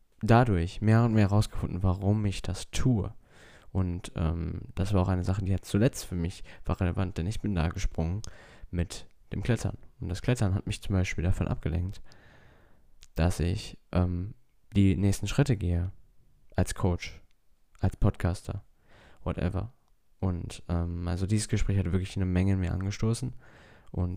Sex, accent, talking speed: male, German, 160 wpm